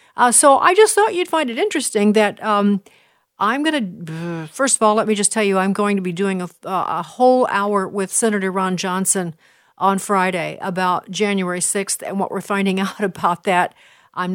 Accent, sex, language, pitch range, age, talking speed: American, female, English, 190-225 Hz, 50-69, 195 wpm